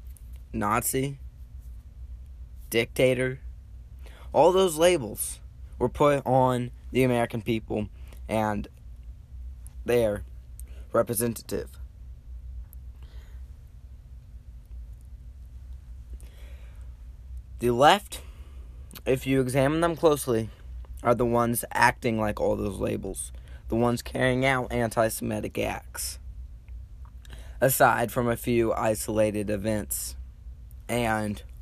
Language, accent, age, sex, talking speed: English, American, 20-39, male, 80 wpm